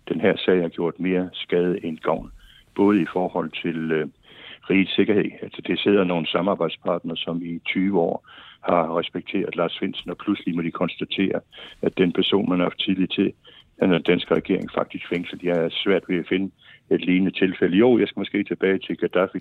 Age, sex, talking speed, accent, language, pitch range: 60-79, male, 195 wpm, native, Danish, 90-105 Hz